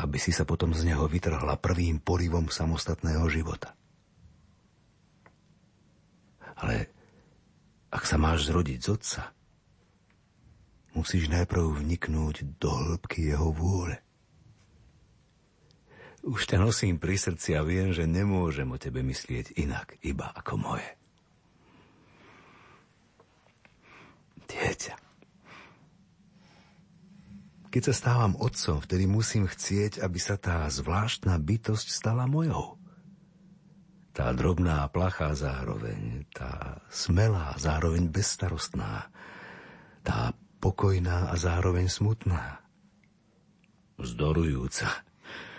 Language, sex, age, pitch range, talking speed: Slovak, male, 50-69, 80-105 Hz, 95 wpm